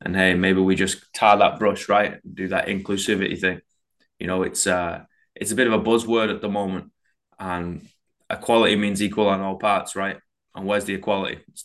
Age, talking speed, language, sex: 20-39, 195 wpm, English, male